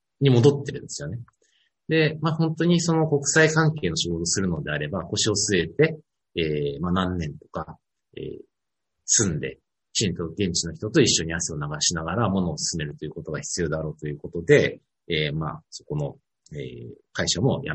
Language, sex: Japanese, male